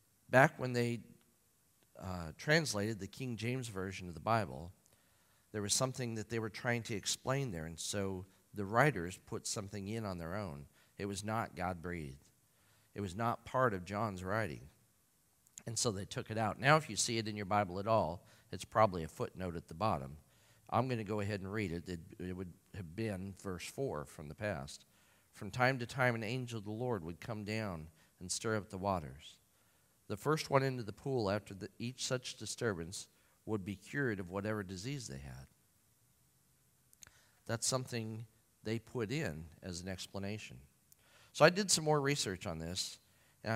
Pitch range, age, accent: 95-120 Hz, 50-69, American